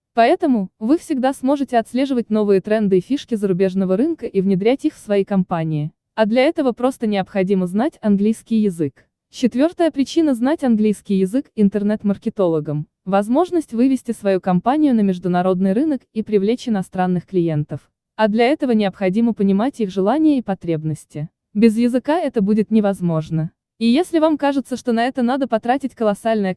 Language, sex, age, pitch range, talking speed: Russian, female, 20-39, 195-265 Hz, 150 wpm